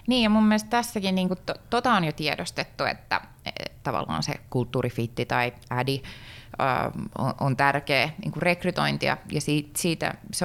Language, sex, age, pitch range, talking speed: Finnish, female, 20-39, 135-180 Hz, 160 wpm